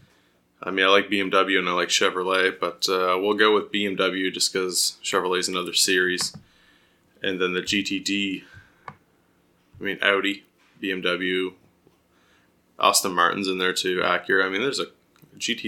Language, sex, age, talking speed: English, male, 20-39, 150 wpm